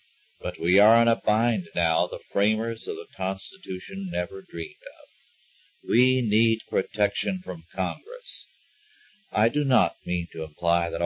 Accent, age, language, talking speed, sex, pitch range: American, 60-79, English, 145 wpm, male, 95-130 Hz